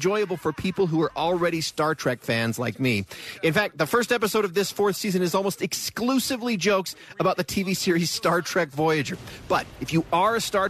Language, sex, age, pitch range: English, male, 40-59, 135-190 Hz